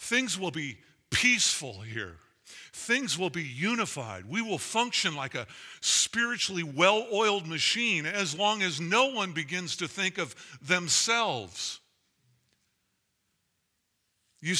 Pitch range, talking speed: 135-210 Hz, 115 wpm